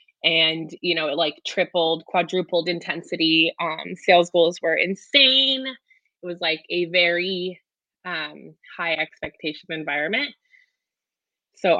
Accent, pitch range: American, 160-210 Hz